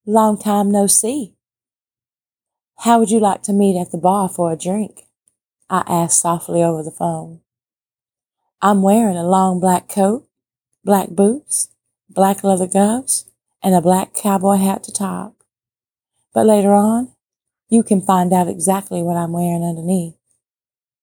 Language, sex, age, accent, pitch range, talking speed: English, female, 30-49, American, 165-190 Hz, 150 wpm